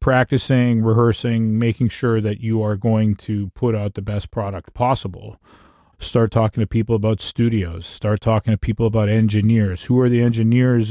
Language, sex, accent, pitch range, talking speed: English, male, American, 110-125 Hz, 170 wpm